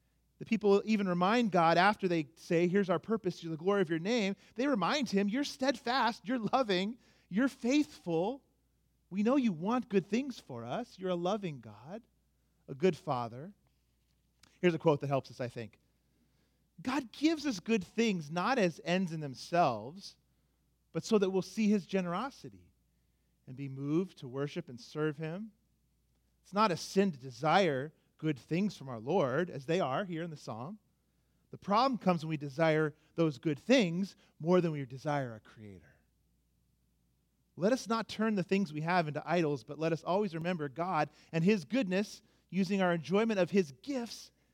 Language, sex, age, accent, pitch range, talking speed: English, male, 40-59, American, 145-215 Hz, 180 wpm